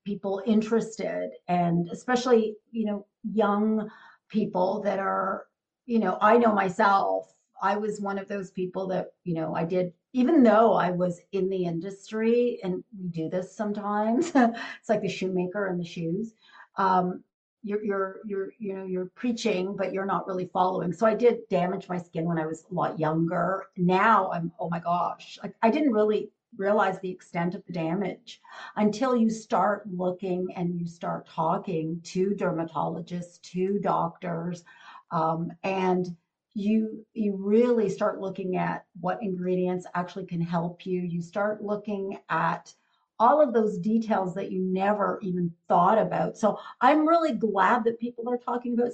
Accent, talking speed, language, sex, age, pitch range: American, 165 wpm, English, female, 40-59, 180-220 Hz